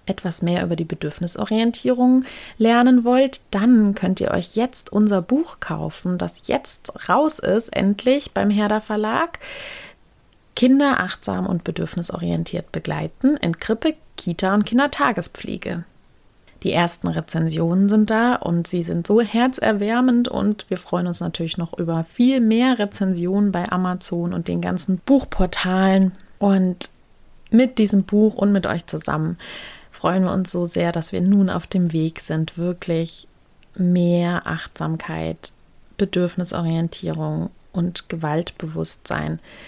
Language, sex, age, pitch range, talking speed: German, female, 30-49, 170-225 Hz, 130 wpm